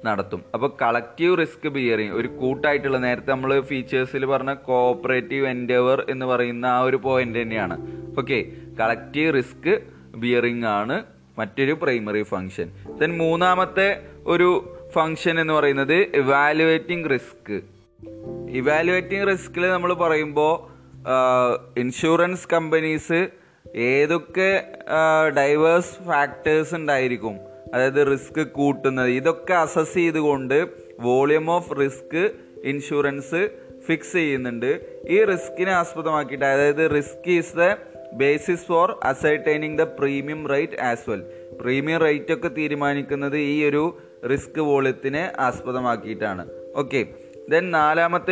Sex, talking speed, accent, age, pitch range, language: male, 105 wpm, native, 20-39, 130-165 Hz, Malayalam